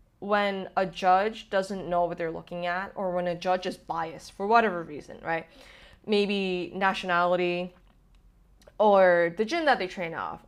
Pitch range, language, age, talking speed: 165-195 Hz, English, 20-39, 160 wpm